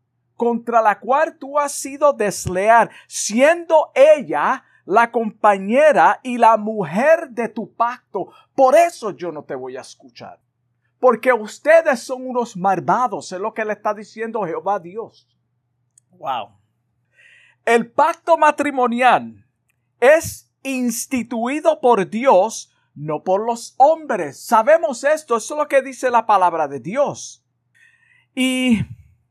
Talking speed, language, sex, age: 125 wpm, Spanish, male, 50-69